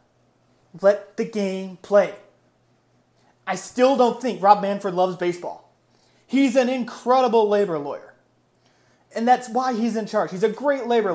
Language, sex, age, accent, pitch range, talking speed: English, male, 30-49, American, 180-230 Hz, 145 wpm